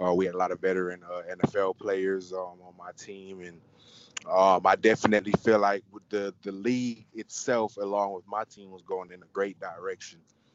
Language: English